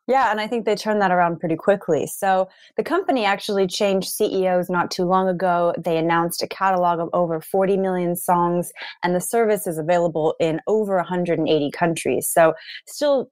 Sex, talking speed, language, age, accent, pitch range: female, 180 wpm, English, 20-39, American, 165-195 Hz